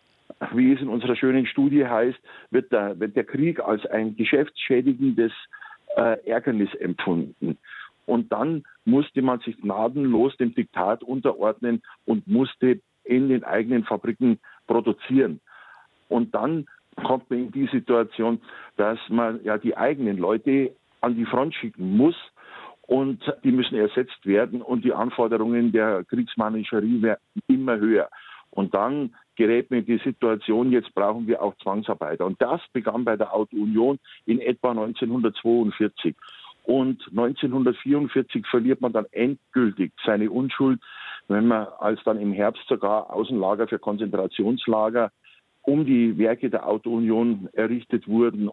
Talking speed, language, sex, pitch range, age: 135 wpm, German, male, 110-130 Hz, 50-69